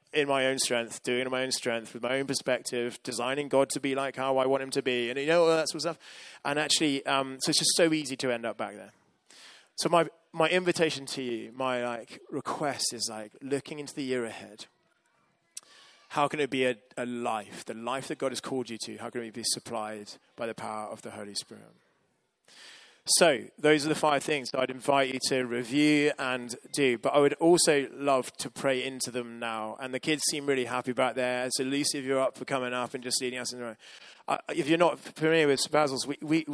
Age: 20-39